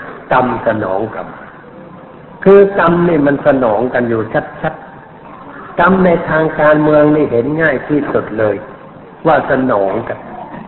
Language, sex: Thai, male